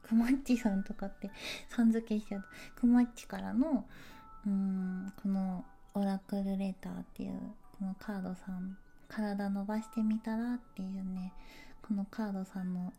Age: 20-39